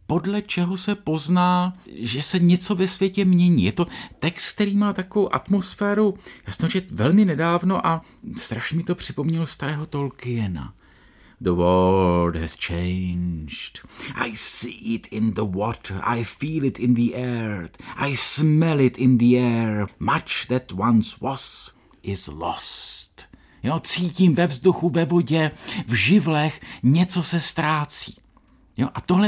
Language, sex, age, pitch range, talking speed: Czech, male, 50-69, 115-180 Hz, 140 wpm